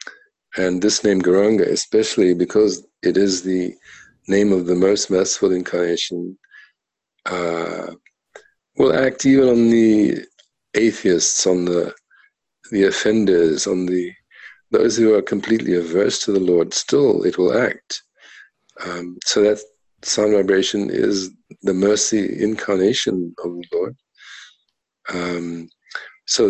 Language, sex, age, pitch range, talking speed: English, male, 50-69, 90-100 Hz, 120 wpm